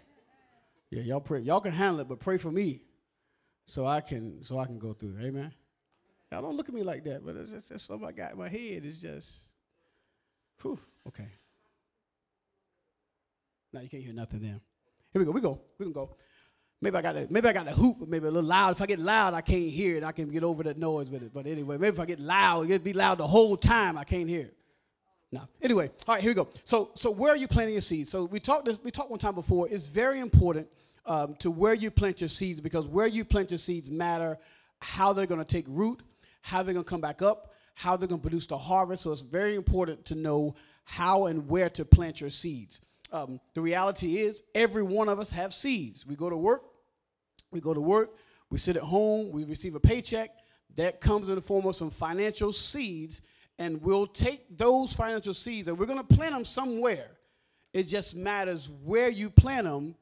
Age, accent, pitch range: 30-49, American, 155-210 Hz